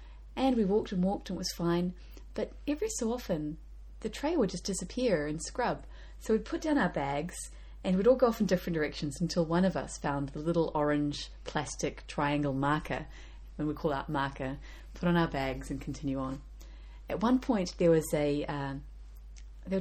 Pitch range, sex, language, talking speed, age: 140-220 Hz, female, English, 195 wpm, 30-49